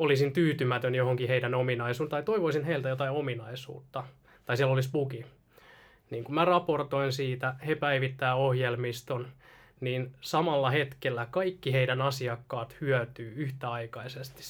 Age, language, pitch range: 20-39, Finnish, 125-145 Hz